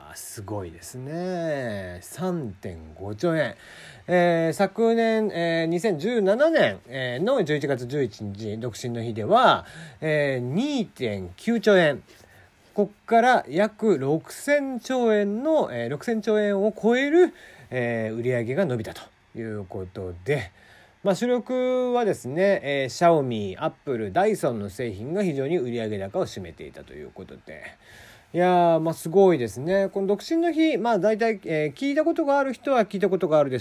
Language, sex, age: Japanese, male, 40-59